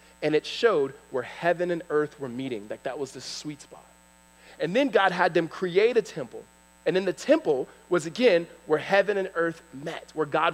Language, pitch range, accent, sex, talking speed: English, 160-255 Hz, American, male, 205 wpm